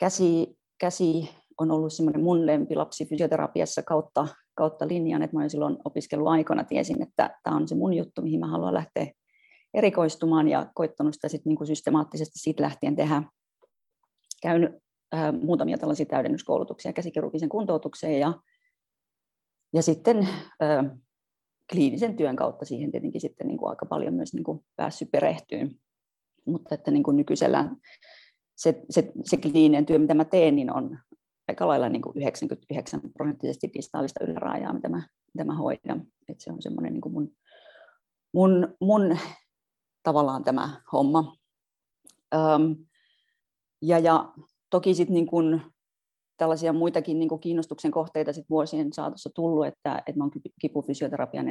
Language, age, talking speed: Finnish, 30-49, 135 wpm